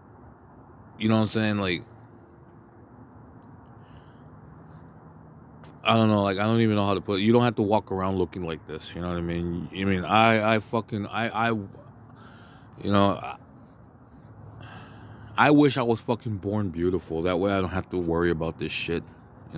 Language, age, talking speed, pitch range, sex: English, 20-39, 185 wpm, 85-110 Hz, male